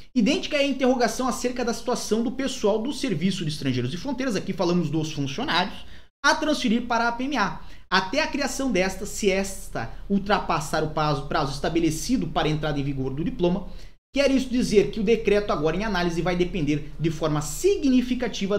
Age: 20-39